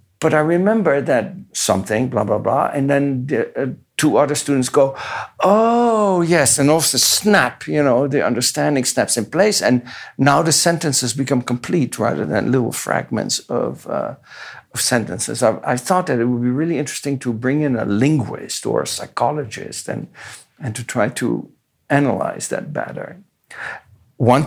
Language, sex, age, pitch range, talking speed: English, male, 60-79, 125-155 Hz, 165 wpm